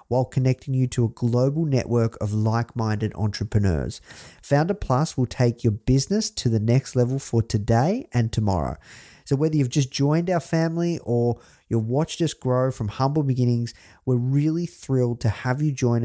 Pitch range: 115-140 Hz